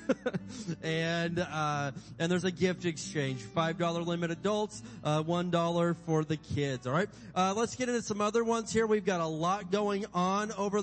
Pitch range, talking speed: 175-210 Hz, 175 wpm